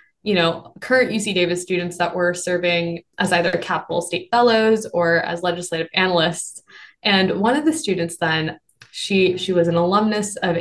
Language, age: English, 20-39